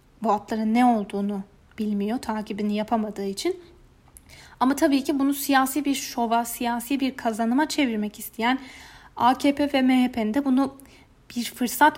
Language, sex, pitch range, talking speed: German, female, 220-275 Hz, 130 wpm